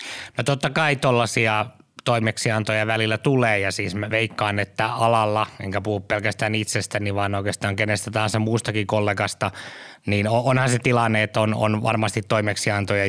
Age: 20-39